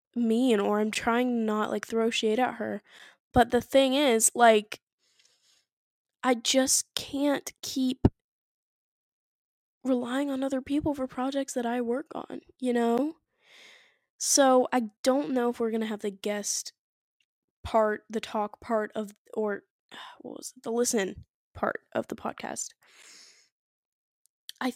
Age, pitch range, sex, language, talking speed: 10-29, 220-275 Hz, female, English, 140 wpm